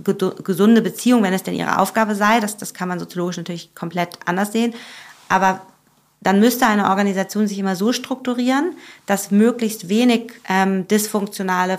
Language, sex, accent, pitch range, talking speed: German, female, German, 180-215 Hz, 160 wpm